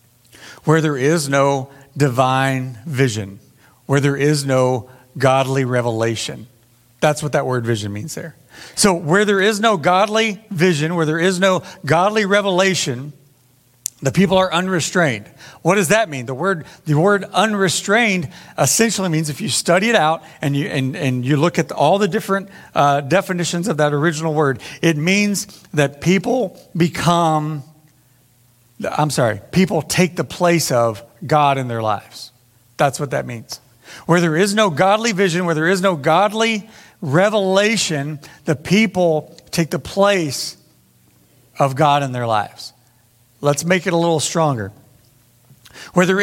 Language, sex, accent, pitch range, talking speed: English, male, American, 130-185 Hz, 155 wpm